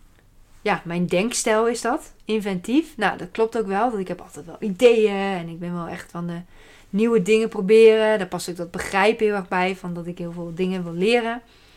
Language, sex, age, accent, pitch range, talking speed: Dutch, female, 20-39, Dutch, 185-225 Hz, 220 wpm